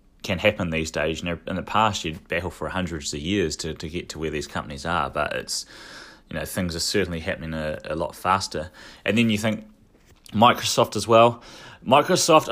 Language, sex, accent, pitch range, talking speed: English, male, Australian, 85-105 Hz, 205 wpm